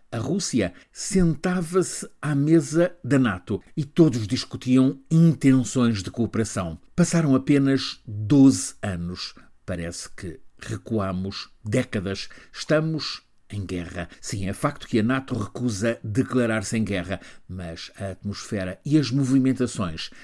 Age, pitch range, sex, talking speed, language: 50-69, 100-135 Hz, male, 120 wpm, Portuguese